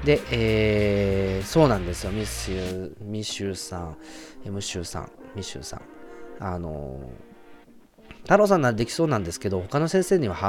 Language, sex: Japanese, male